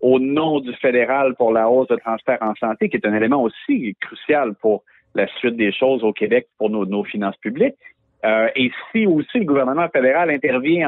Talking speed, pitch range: 205 wpm, 120-175 Hz